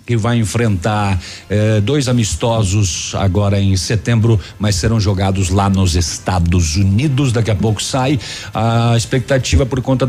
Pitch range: 100-125 Hz